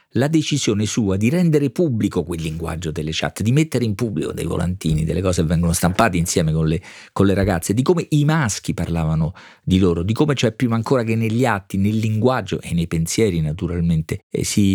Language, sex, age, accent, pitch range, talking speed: Italian, male, 40-59, native, 85-110 Hz, 195 wpm